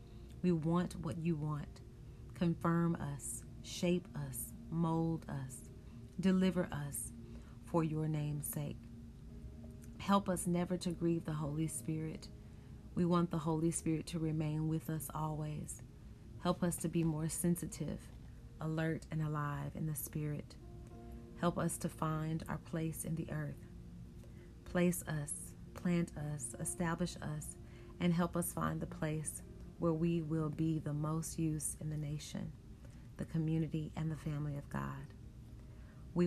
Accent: American